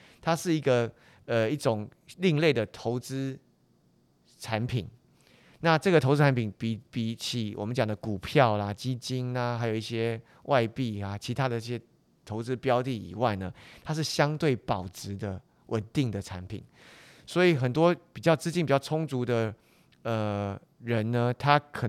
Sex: male